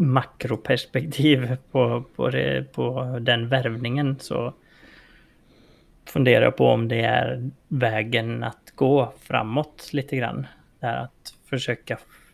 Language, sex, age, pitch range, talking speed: English, male, 20-39, 115-135 Hz, 100 wpm